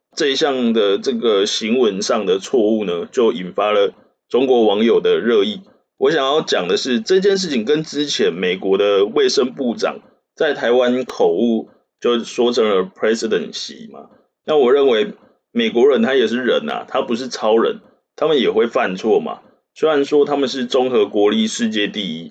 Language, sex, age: Chinese, male, 20-39